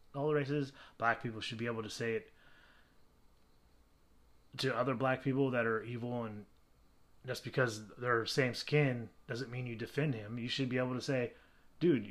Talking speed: 180 wpm